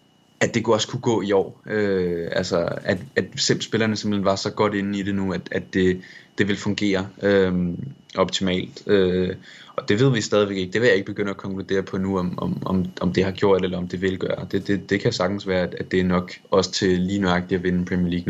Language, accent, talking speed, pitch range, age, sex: Danish, native, 245 wpm, 90-100 Hz, 20-39, male